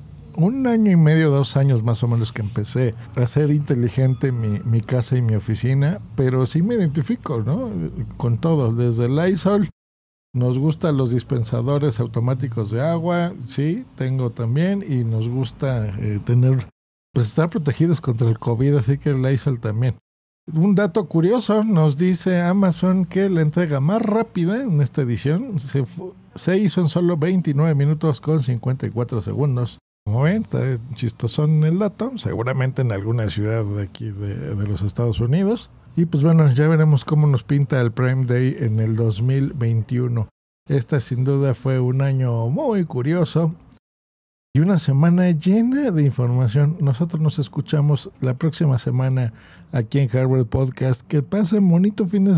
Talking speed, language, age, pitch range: 160 wpm, Spanish, 50-69, 125-170 Hz